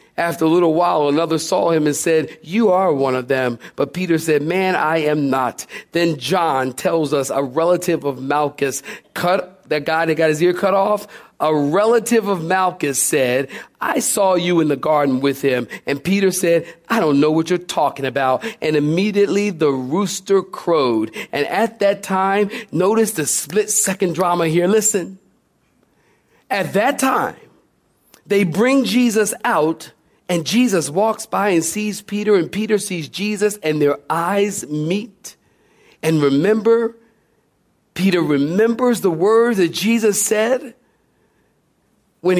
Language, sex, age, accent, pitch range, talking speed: English, male, 40-59, American, 150-205 Hz, 155 wpm